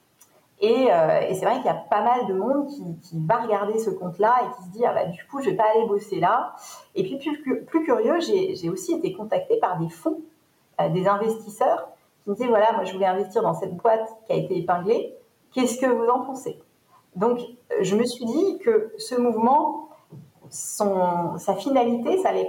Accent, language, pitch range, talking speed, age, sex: French, French, 190-265 Hz, 220 wpm, 40-59, female